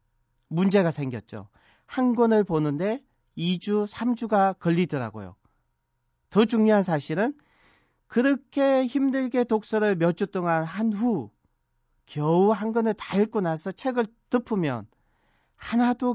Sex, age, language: male, 40-59, Korean